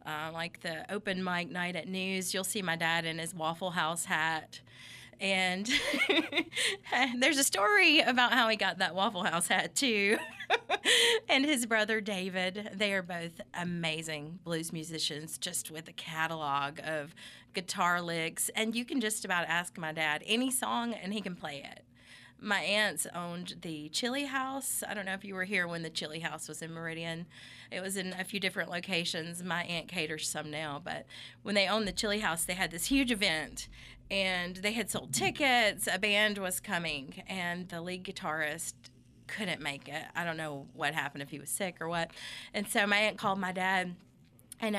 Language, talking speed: English, 190 wpm